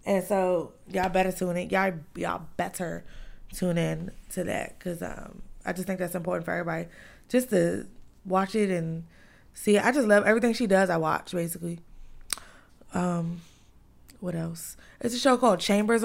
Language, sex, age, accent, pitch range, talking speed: English, female, 20-39, American, 180-205 Hz, 170 wpm